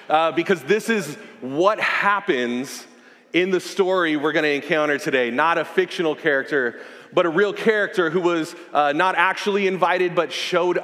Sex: male